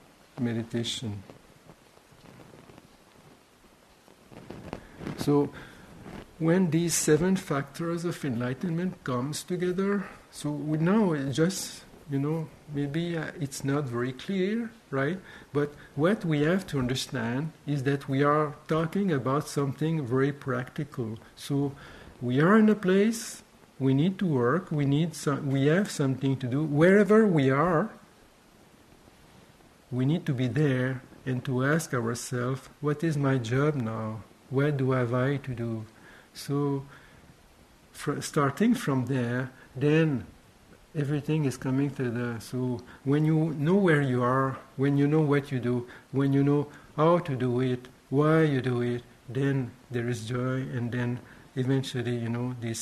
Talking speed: 140 wpm